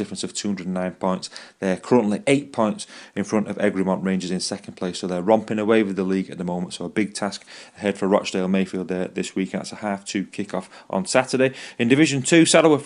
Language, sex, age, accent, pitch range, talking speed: English, male, 30-49, British, 100-135 Hz, 215 wpm